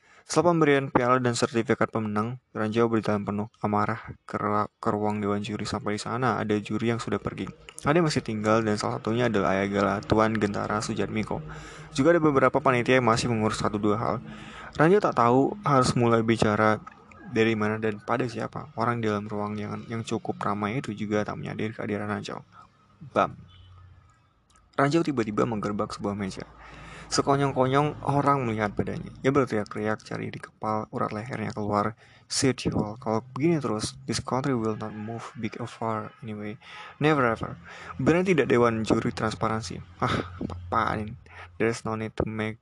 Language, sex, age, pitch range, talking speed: Indonesian, male, 20-39, 105-125 Hz, 160 wpm